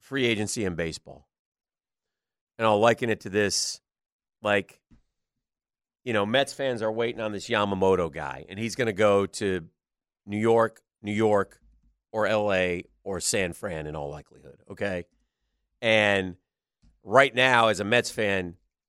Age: 40-59